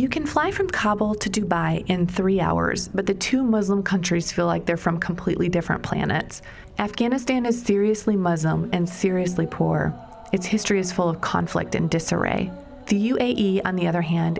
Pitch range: 170-210 Hz